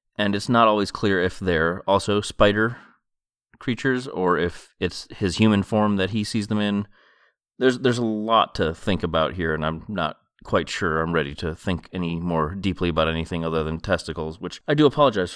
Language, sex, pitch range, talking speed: English, male, 90-115 Hz, 195 wpm